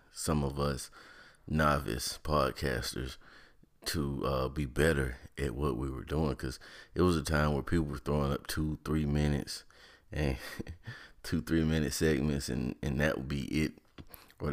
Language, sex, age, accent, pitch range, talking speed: English, male, 30-49, American, 70-80 Hz, 160 wpm